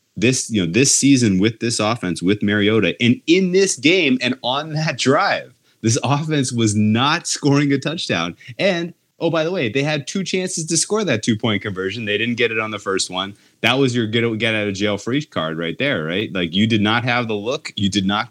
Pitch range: 90-115 Hz